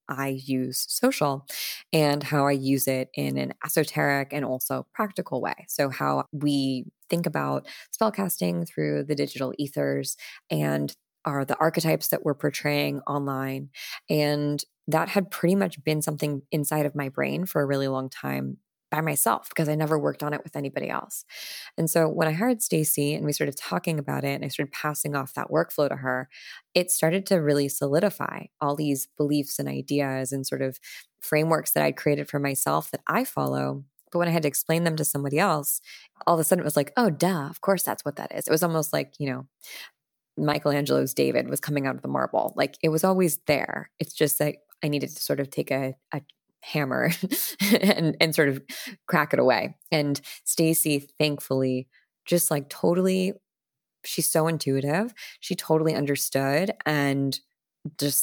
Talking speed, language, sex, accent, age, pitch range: 185 wpm, English, female, American, 20-39, 135-160 Hz